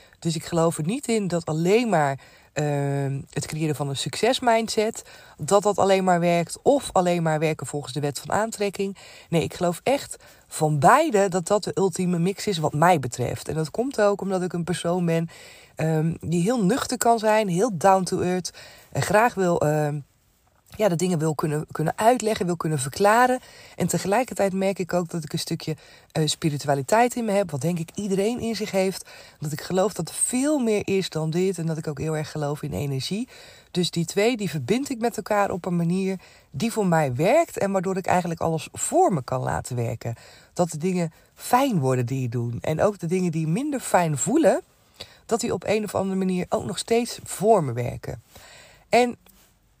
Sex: female